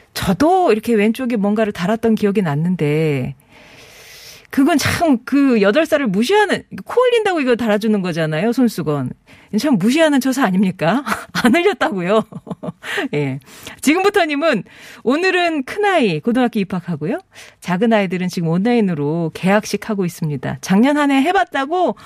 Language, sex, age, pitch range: Korean, female, 40-59, 175-250 Hz